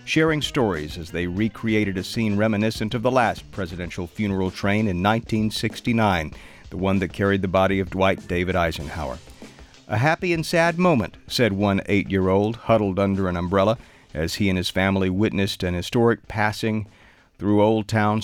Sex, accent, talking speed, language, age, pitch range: male, American, 165 wpm, English, 50-69, 100-130 Hz